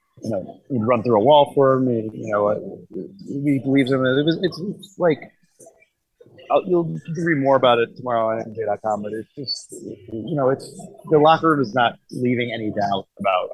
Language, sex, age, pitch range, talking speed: English, male, 30-49, 105-125 Hz, 200 wpm